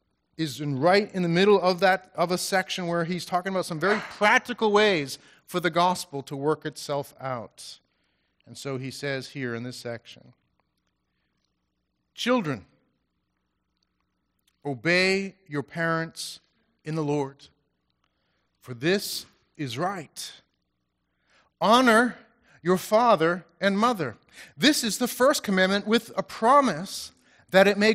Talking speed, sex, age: 125 wpm, male, 40-59